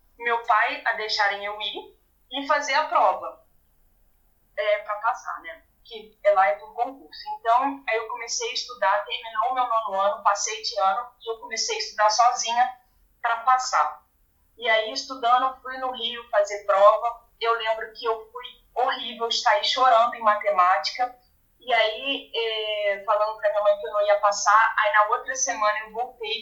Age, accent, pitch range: 20-39, Brazilian, 210-255 Hz